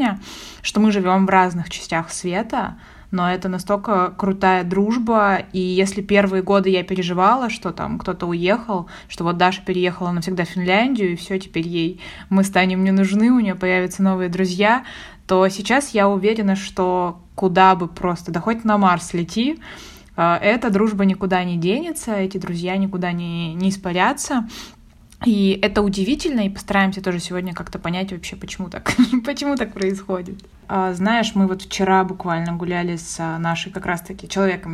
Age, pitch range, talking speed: 20-39, 180-205 Hz, 160 wpm